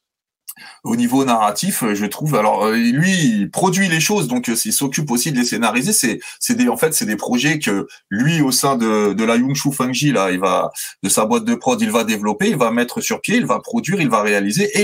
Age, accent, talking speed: 30-49, French, 235 wpm